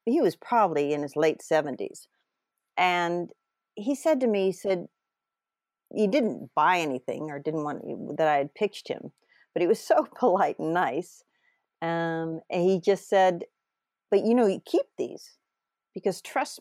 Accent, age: American, 50-69